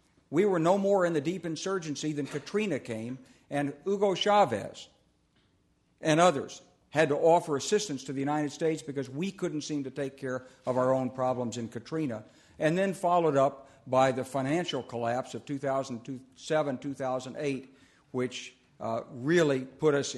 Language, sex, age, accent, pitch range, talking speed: English, male, 60-79, American, 130-160 Hz, 155 wpm